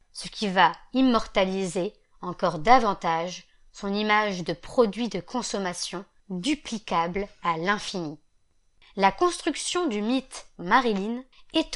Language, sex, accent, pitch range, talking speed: French, female, French, 185-265 Hz, 105 wpm